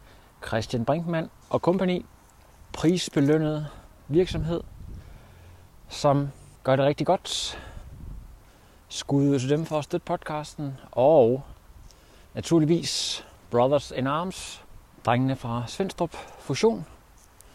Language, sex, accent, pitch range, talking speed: Danish, male, native, 110-140 Hz, 90 wpm